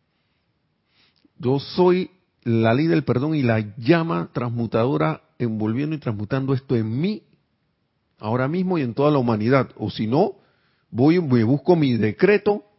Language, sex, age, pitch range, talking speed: Spanish, male, 50-69, 110-140 Hz, 145 wpm